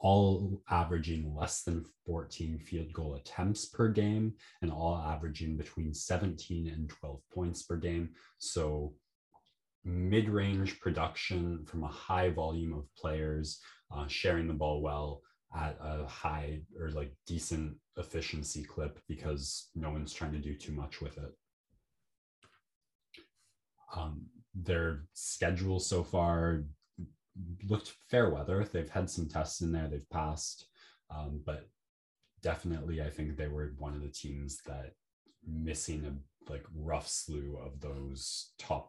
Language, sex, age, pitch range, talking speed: English, male, 20-39, 75-85 Hz, 135 wpm